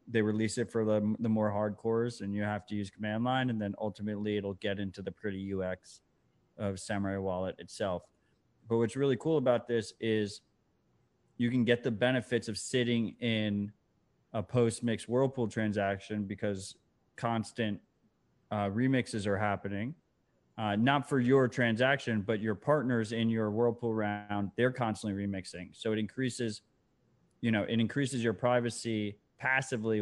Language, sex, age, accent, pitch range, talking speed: English, male, 20-39, American, 105-120 Hz, 155 wpm